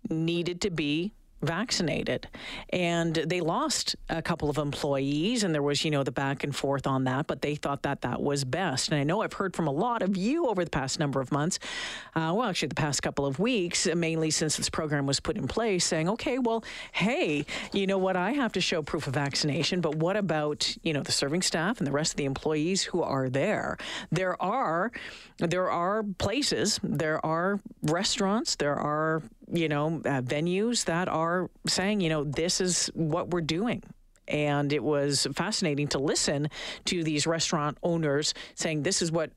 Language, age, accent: English, 50-69, American